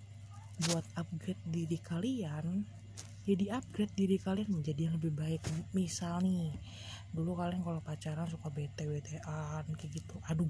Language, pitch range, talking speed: Indonesian, 140-185 Hz, 135 wpm